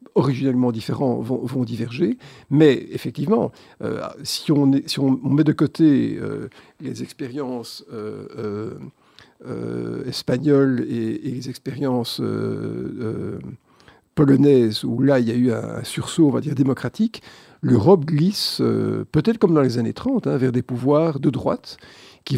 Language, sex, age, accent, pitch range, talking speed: French, male, 50-69, French, 125-155 Hz, 140 wpm